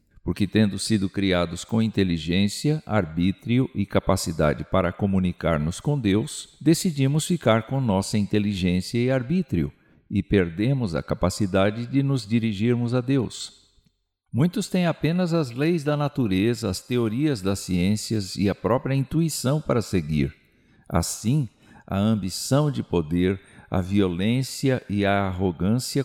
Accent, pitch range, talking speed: Brazilian, 95-135 Hz, 130 wpm